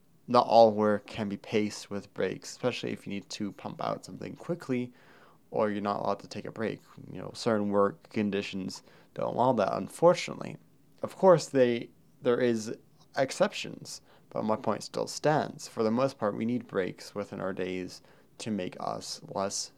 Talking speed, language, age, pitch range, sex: 180 wpm, English, 20-39, 100-120 Hz, male